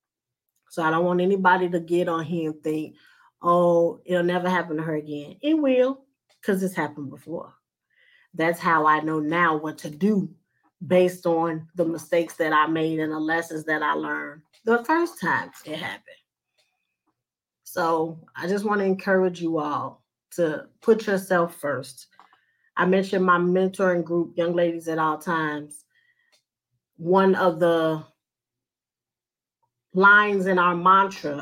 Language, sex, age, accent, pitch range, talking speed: English, female, 30-49, American, 160-185 Hz, 150 wpm